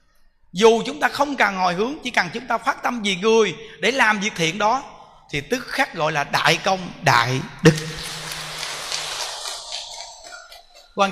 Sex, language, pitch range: male, Vietnamese, 155-210 Hz